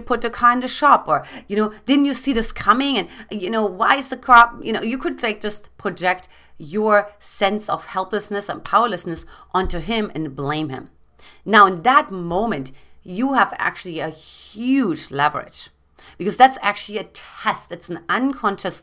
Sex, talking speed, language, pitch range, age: female, 180 wpm, English, 185-235 Hz, 30-49